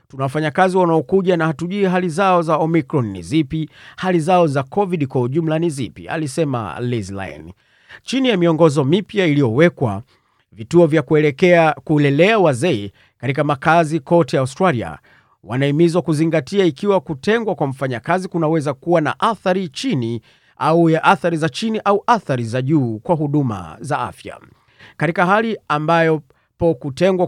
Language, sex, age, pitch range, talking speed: Swahili, male, 40-59, 135-170 Hz, 145 wpm